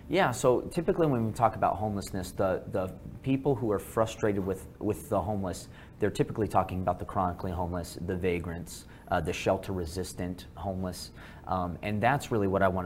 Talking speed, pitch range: 180 wpm, 90-110 Hz